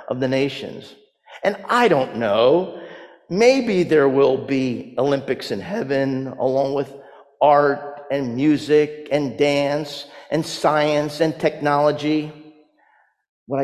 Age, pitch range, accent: 50-69, 125-165 Hz, American